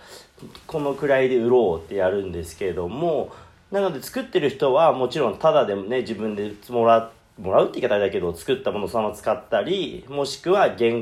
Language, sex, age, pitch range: Japanese, male, 40-59, 135-205 Hz